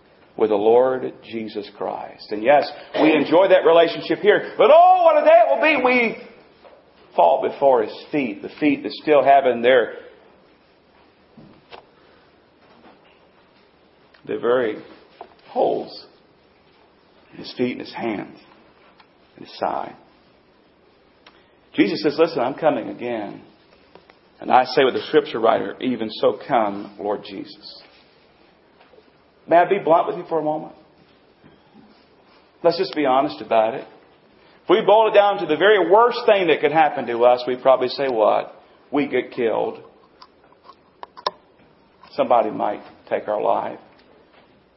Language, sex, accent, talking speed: English, male, American, 140 wpm